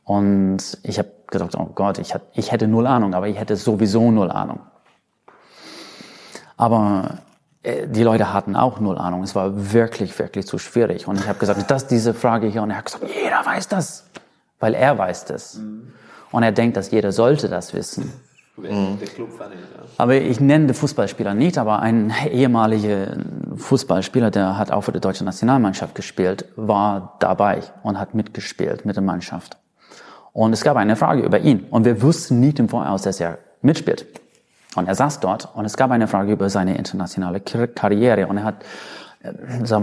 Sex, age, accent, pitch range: male, 30-49, German, 100-115 Hz